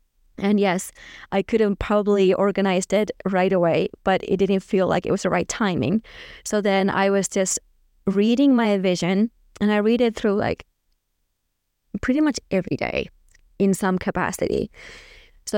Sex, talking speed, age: female, 160 wpm, 20-39